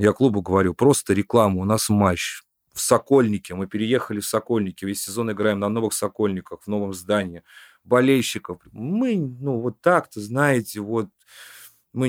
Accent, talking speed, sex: native, 155 wpm, male